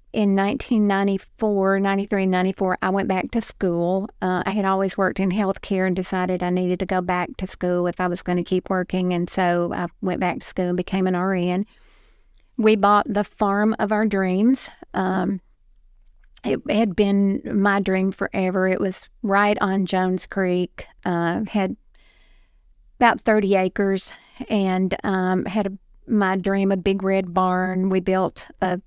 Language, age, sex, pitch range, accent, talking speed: English, 50-69, female, 185-205 Hz, American, 170 wpm